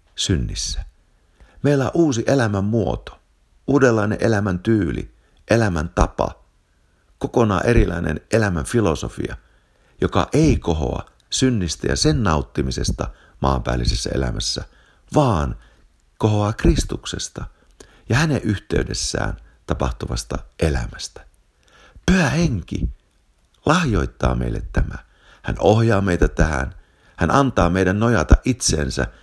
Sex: male